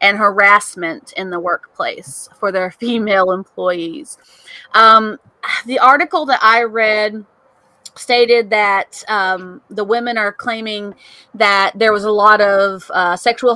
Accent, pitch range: American, 195-235 Hz